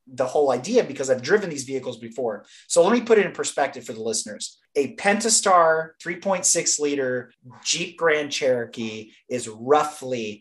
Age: 30-49